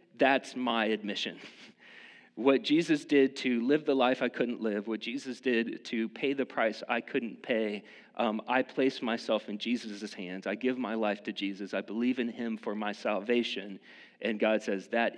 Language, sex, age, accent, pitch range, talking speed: English, male, 40-59, American, 115-155 Hz, 185 wpm